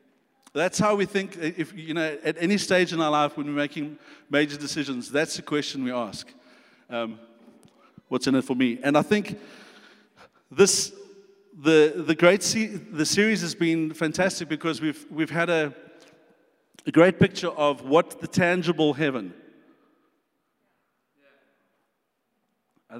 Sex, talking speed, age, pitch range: male, 145 wpm, 50-69, 145-185 Hz